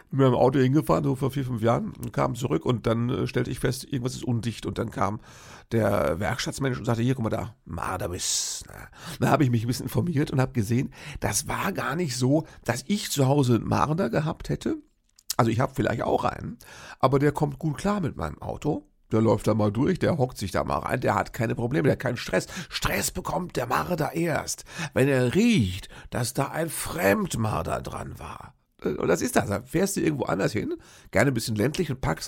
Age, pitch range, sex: 50-69, 110-140 Hz, male